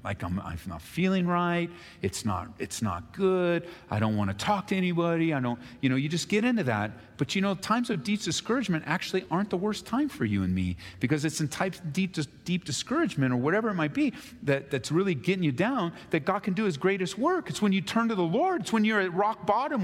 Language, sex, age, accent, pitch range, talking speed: English, male, 40-59, American, 140-195 Hz, 250 wpm